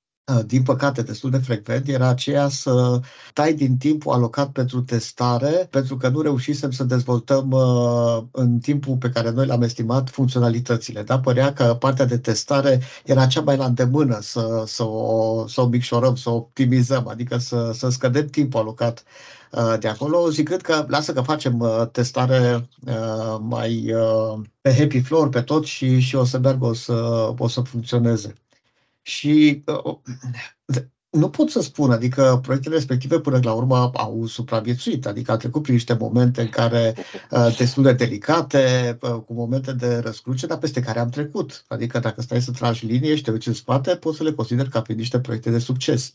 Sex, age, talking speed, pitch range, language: male, 50-69, 175 wpm, 115-135 Hz, Romanian